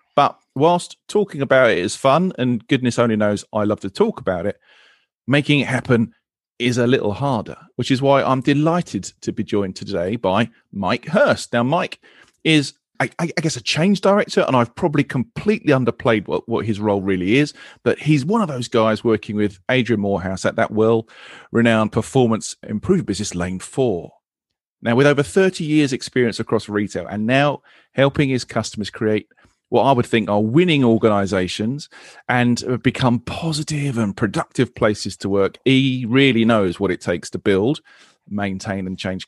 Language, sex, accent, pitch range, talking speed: English, male, British, 105-145 Hz, 175 wpm